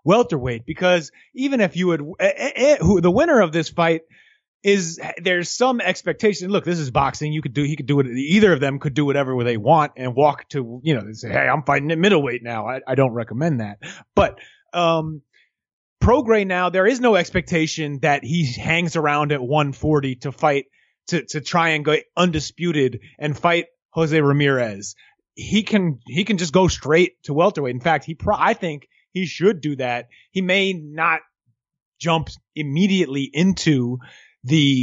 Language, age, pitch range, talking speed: English, 30-49, 140-185 Hz, 185 wpm